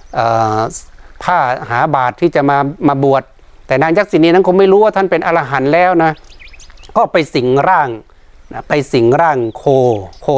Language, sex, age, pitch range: Thai, male, 60-79, 120-160 Hz